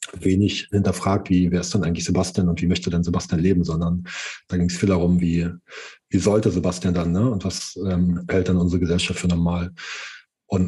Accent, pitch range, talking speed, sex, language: German, 90-100 Hz, 200 wpm, male, German